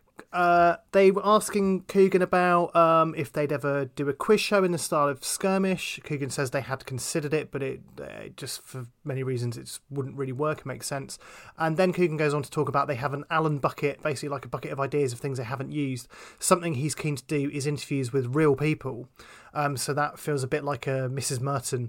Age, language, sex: 30-49, English, male